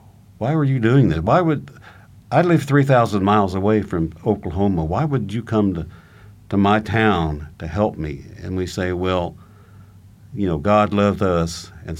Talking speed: 175 wpm